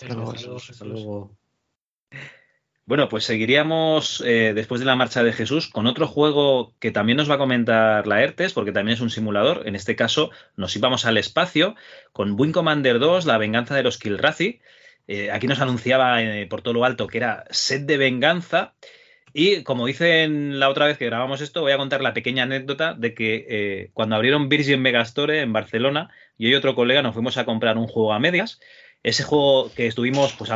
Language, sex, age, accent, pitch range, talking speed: Spanish, male, 30-49, Spanish, 110-140 Hz, 205 wpm